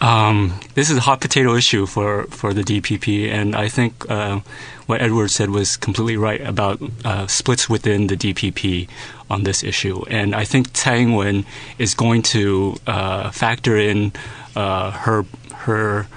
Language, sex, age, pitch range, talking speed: English, male, 30-49, 105-120 Hz, 165 wpm